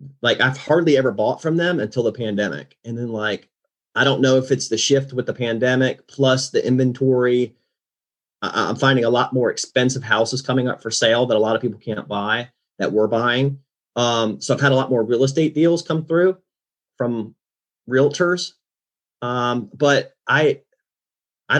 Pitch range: 120-140 Hz